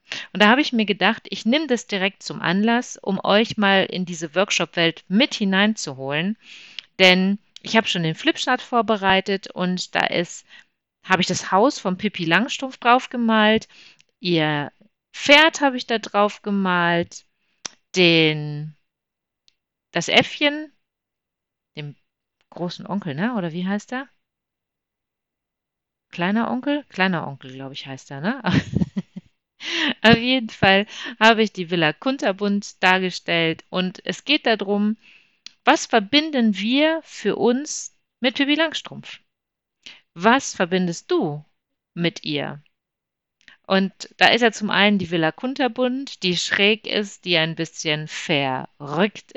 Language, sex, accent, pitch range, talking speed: German, female, German, 170-230 Hz, 130 wpm